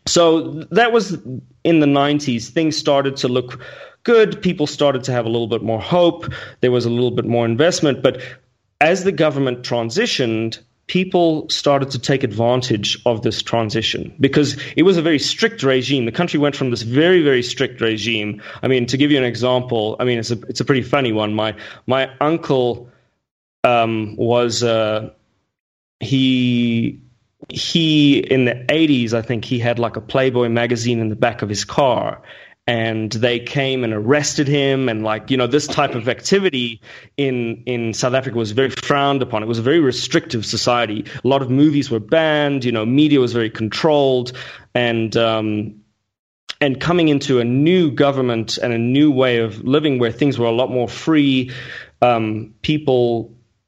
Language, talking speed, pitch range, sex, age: English, 180 wpm, 115-145 Hz, male, 30-49